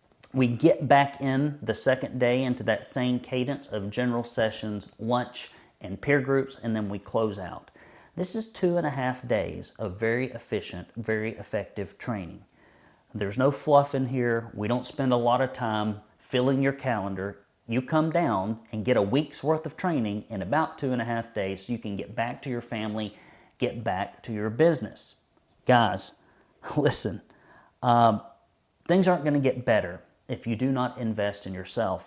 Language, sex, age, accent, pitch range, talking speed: English, male, 40-59, American, 105-135 Hz, 180 wpm